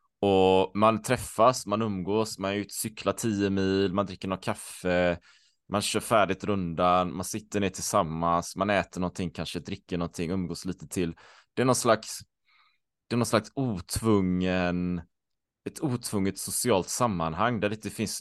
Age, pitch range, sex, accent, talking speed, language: 20-39, 90-115 Hz, male, Norwegian, 160 wpm, Swedish